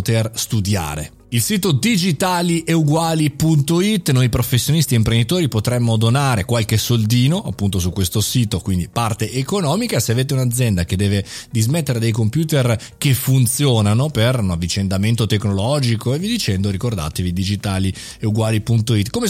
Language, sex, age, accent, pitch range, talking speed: Italian, male, 30-49, native, 110-160 Hz, 125 wpm